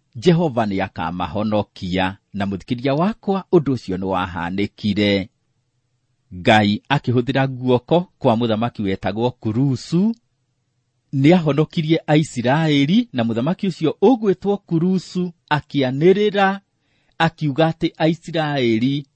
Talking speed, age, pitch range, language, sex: 105 wpm, 40-59, 105-155 Hz, English, male